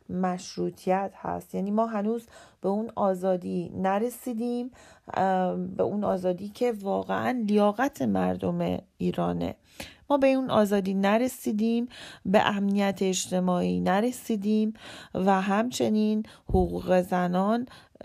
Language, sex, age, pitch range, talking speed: Persian, female, 40-59, 155-225 Hz, 100 wpm